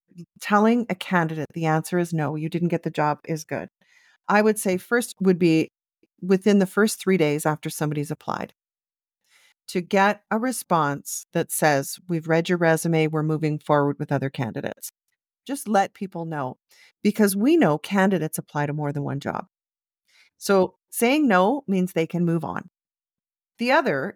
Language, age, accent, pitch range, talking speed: English, 40-59, American, 155-200 Hz, 170 wpm